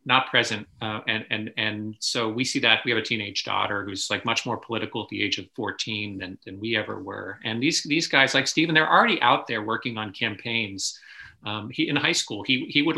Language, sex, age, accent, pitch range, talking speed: English, male, 40-59, American, 110-130 Hz, 235 wpm